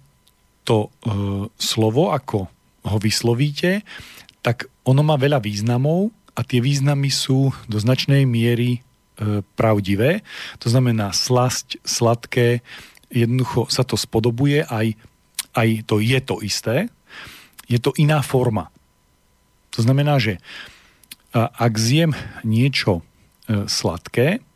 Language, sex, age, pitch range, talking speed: Slovak, male, 40-59, 105-135 Hz, 105 wpm